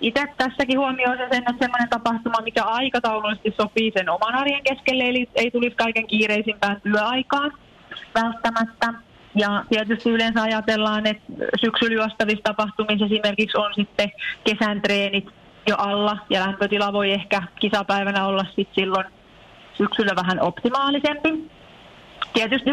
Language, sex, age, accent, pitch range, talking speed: Finnish, female, 30-49, native, 205-245 Hz, 125 wpm